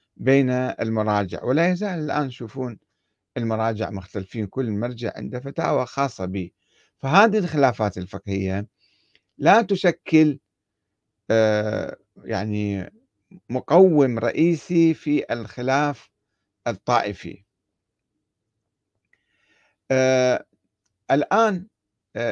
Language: Arabic